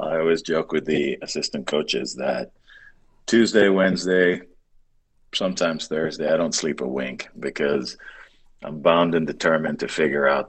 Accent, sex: American, male